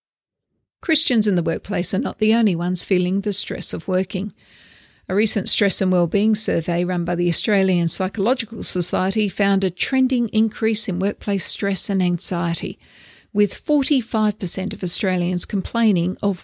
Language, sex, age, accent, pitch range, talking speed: English, female, 50-69, Australian, 185-220 Hz, 150 wpm